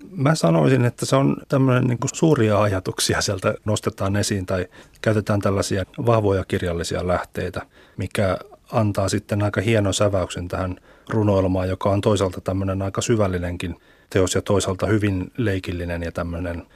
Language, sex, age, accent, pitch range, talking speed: Finnish, male, 30-49, native, 95-110 Hz, 135 wpm